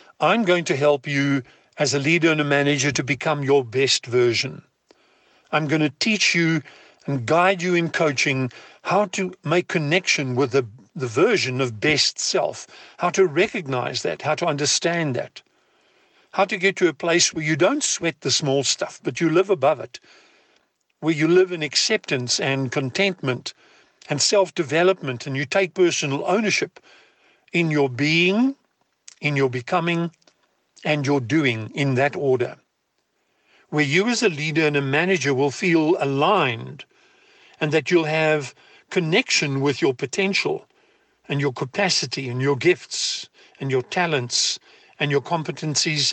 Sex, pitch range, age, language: male, 140-185 Hz, 60-79, English